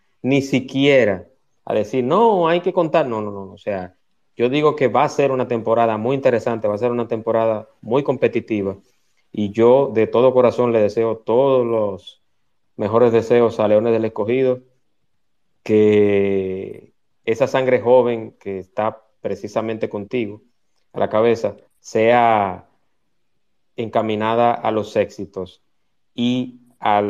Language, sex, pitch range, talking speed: Spanish, male, 105-130 Hz, 140 wpm